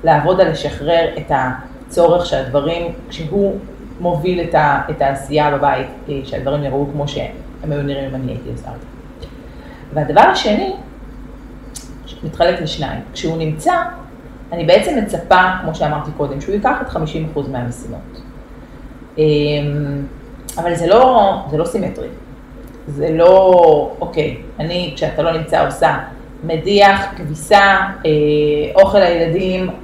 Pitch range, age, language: 145-185 Hz, 30-49, Hebrew